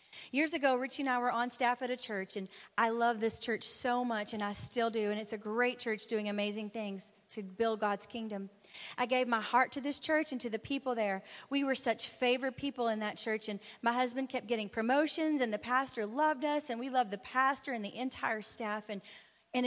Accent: American